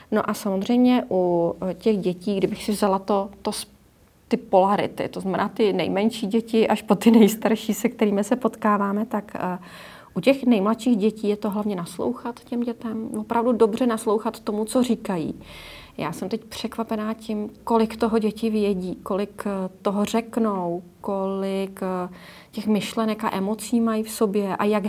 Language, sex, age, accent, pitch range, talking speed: Czech, female, 30-49, native, 185-225 Hz, 150 wpm